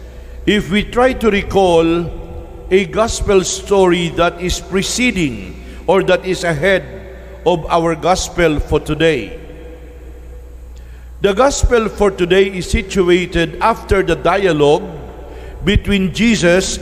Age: 50-69